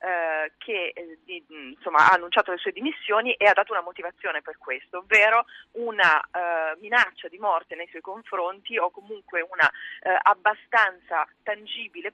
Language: Italian